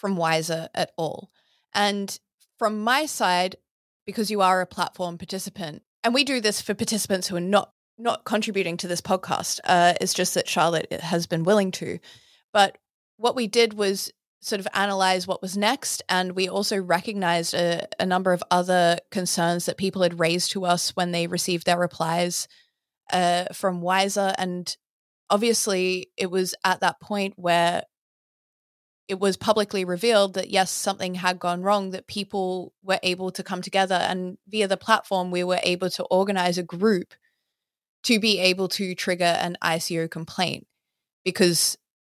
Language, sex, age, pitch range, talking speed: English, female, 20-39, 175-205 Hz, 165 wpm